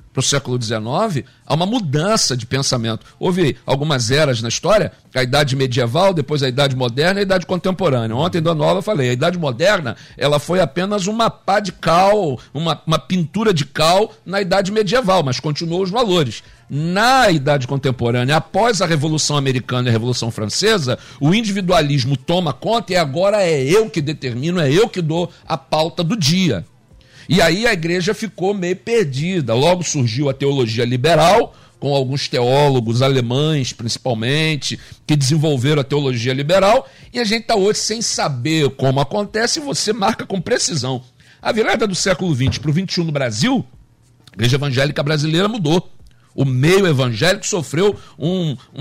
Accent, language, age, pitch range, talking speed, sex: Brazilian, Portuguese, 50-69, 135-185 Hz, 165 wpm, male